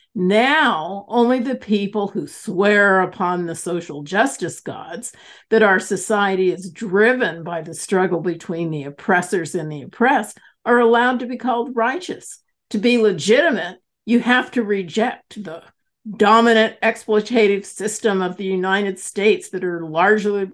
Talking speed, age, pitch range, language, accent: 145 wpm, 50-69, 180-230 Hz, English, American